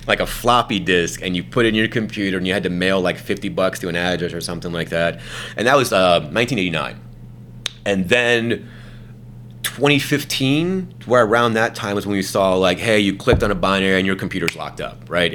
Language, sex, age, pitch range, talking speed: English, male, 30-49, 75-100 Hz, 215 wpm